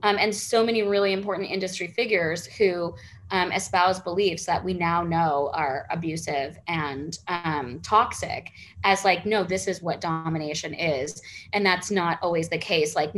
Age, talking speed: 20-39, 165 wpm